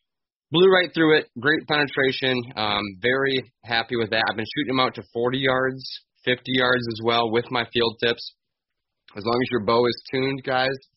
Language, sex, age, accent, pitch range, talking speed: English, male, 20-39, American, 110-135 Hz, 190 wpm